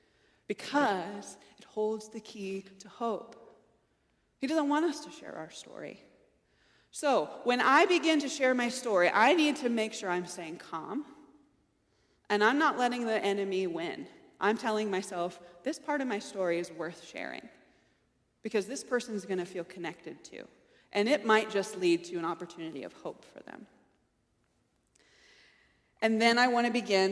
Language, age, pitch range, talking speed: English, 20-39, 180-235 Hz, 170 wpm